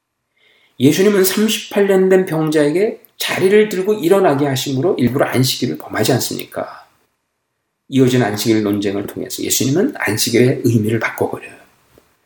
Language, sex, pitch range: Korean, male, 120-185 Hz